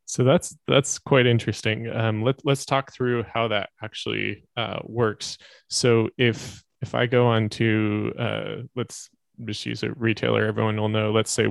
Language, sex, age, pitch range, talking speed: English, male, 20-39, 100-115 Hz, 170 wpm